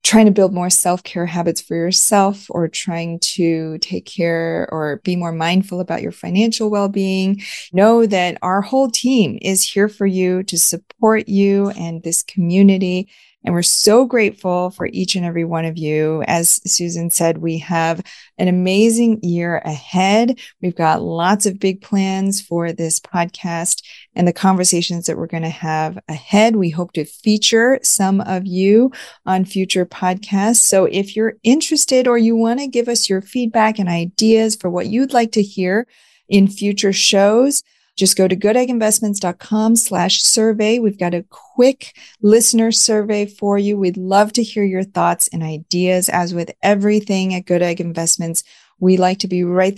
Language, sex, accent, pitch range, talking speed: English, female, American, 175-215 Hz, 170 wpm